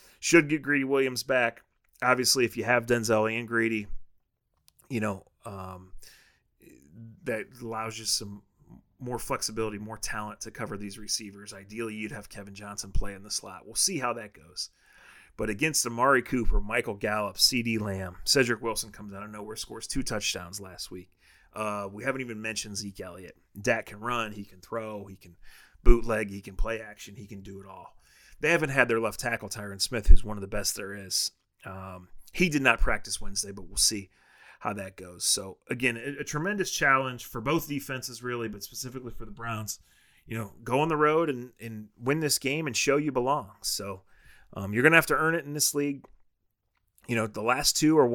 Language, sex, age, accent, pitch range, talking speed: English, male, 30-49, American, 105-125 Hz, 200 wpm